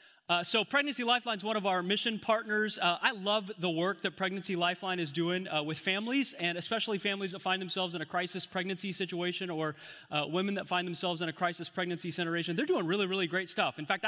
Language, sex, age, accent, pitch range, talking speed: English, male, 30-49, American, 180-230 Hz, 225 wpm